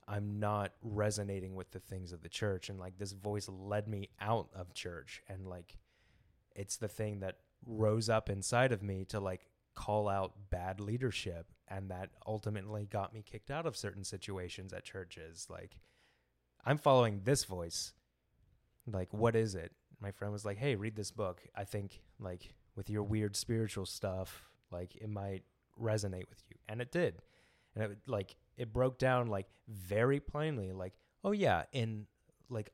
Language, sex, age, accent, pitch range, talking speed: English, male, 20-39, American, 95-115 Hz, 175 wpm